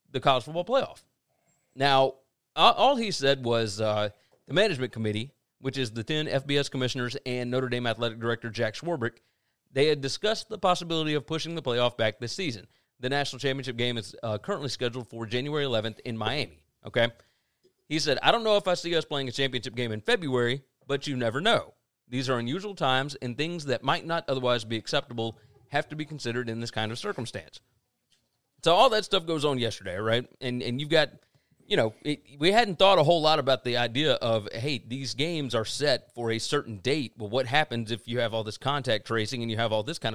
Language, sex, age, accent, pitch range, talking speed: English, male, 30-49, American, 115-145 Hz, 210 wpm